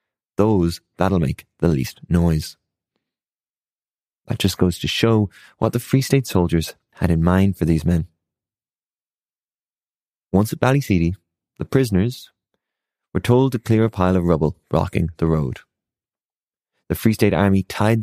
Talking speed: 145 wpm